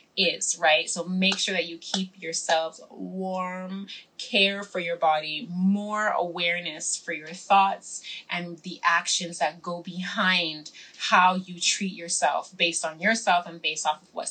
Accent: American